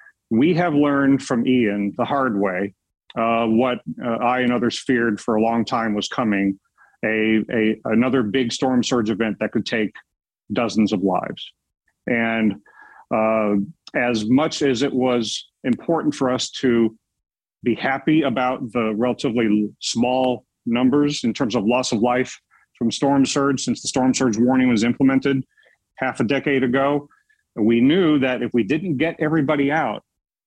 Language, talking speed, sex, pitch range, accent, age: English, 160 wpm, male, 115-140 Hz, American, 40-59